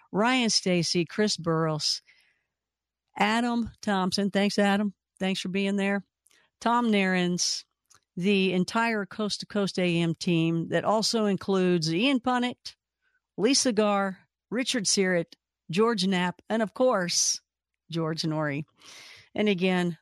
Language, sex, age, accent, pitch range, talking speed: English, female, 50-69, American, 175-240 Hz, 115 wpm